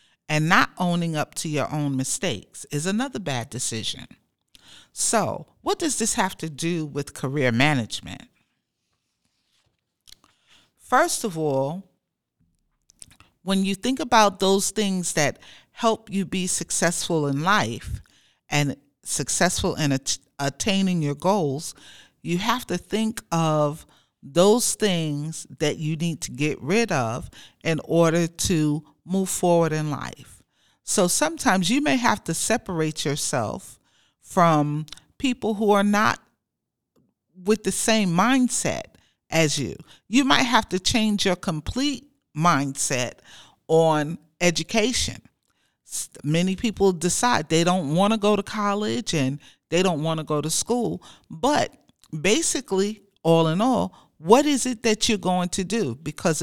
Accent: American